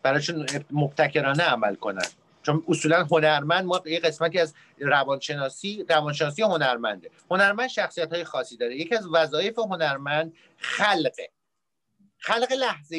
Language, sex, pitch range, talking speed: English, male, 150-195 Hz, 120 wpm